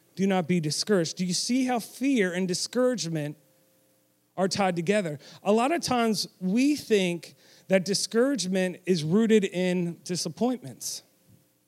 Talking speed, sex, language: 135 wpm, male, English